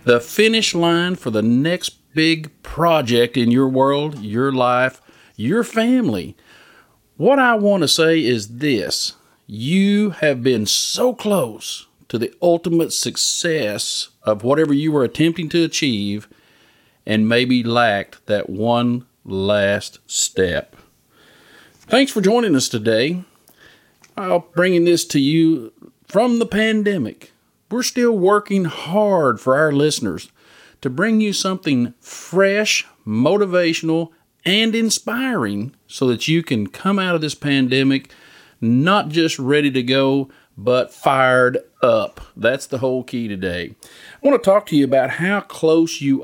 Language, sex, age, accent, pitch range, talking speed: English, male, 50-69, American, 125-185 Hz, 140 wpm